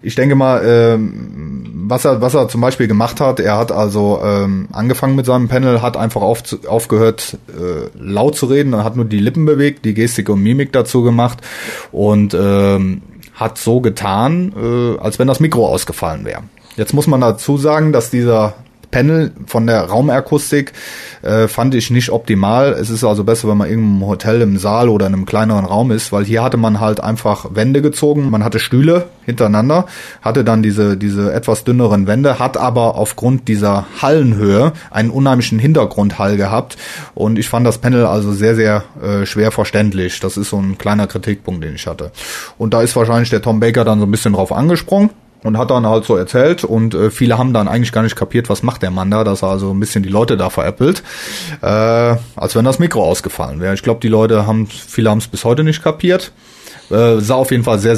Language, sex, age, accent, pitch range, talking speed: German, male, 30-49, German, 105-130 Hz, 200 wpm